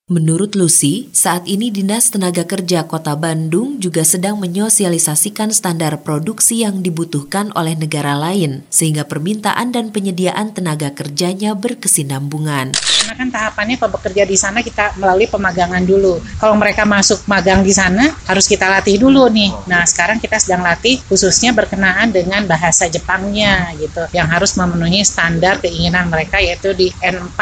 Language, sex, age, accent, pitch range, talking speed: Indonesian, female, 30-49, native, 170-210 Hz, 145 wpm